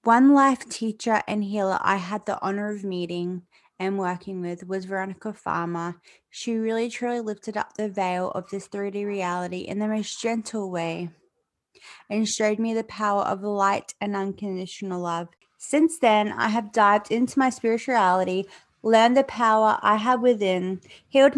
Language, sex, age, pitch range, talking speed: English, female, 20-39, 195-240 Hz, 165 wpm